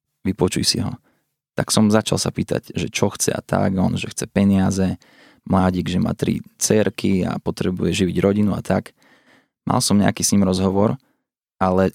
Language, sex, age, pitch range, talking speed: Slovak, male, 20-39, 95-105 Hz, 175 wpm